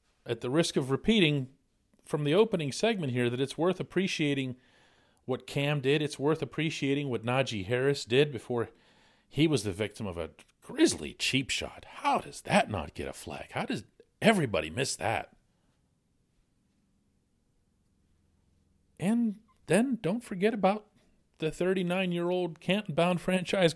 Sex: male